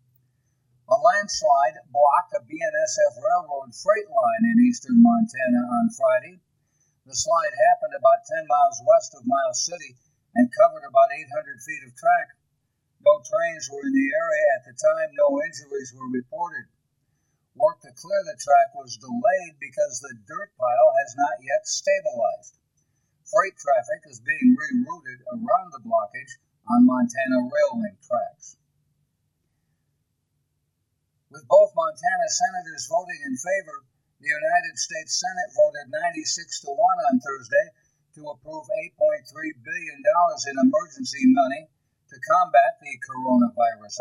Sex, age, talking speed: male, 60-79, 135 wpm